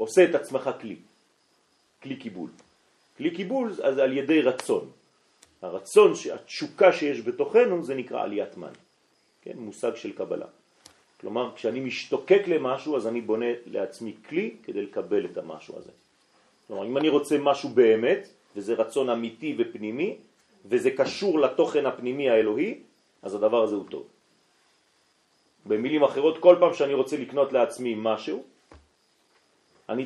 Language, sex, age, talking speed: French, male, 40-59, 135 wpm